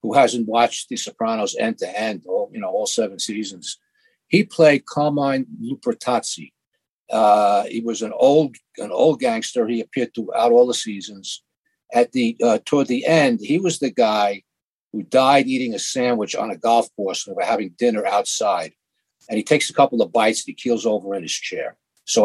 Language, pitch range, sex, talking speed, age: English, 115-160 Hz, male, 190 wpm, 50-69